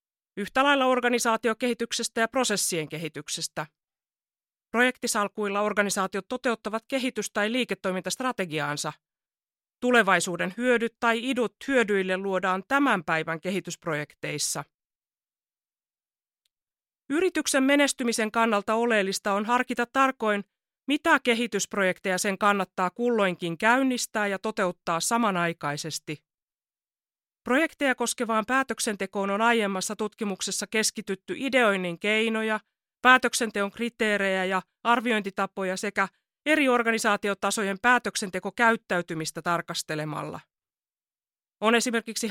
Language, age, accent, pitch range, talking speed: Finnish, 30-49, native, 180-235 Hz, 80 wpm